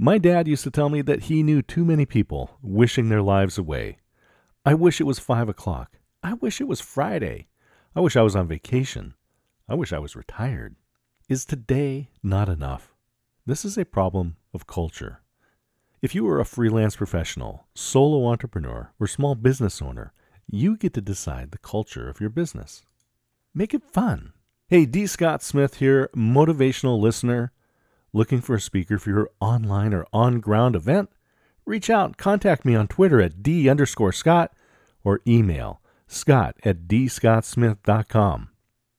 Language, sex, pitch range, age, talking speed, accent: English, male, 100-140 Hz, 40-59, 160 wpm, American